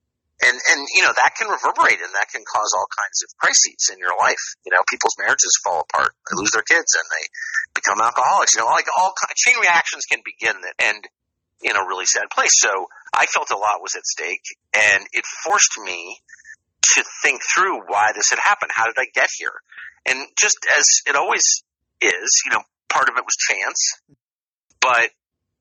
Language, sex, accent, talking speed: English, male, American, 205 wpm